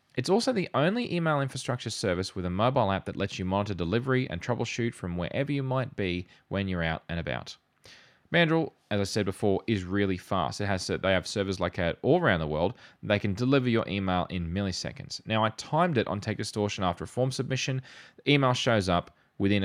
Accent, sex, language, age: Australian, male, English, 20-39